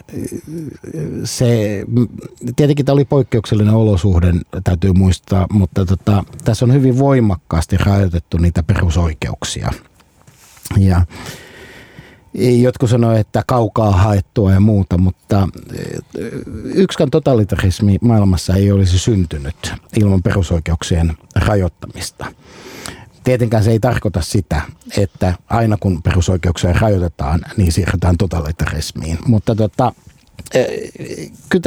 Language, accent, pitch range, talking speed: Finnish, native, 90-125 Hz, 95 wpm